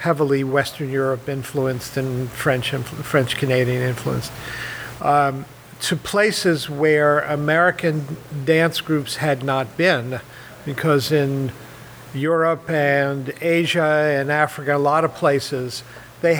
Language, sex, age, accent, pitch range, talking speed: English, male, 50-69, American, 135-160 Hz, 115 wpm